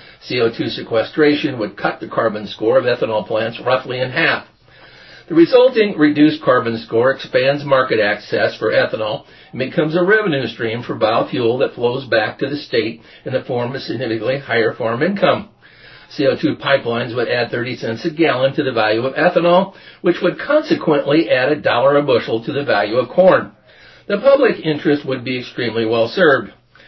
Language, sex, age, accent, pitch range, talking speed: English, male, 50-69, American, 120-195 Hz, 175 wpm